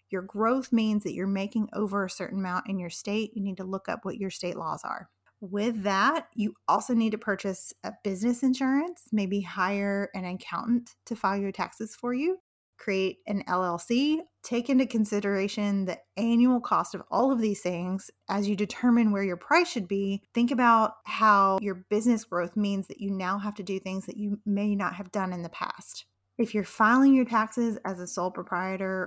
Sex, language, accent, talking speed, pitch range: female, English, American, 200 wpm, 190-230 Hz